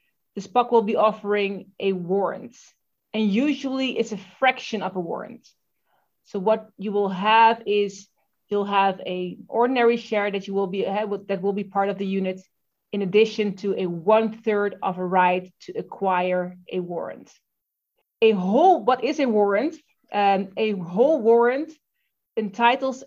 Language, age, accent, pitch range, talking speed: English, 30-49, Dutch, 195-225 Hz, 160 wpm